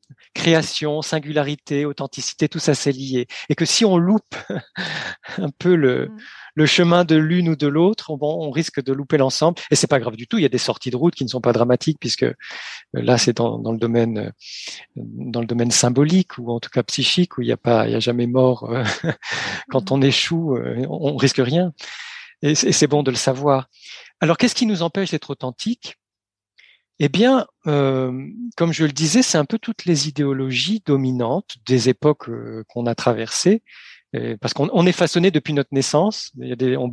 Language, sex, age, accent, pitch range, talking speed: French, male, 40-59, French, 130-170 Hz, 195 wpm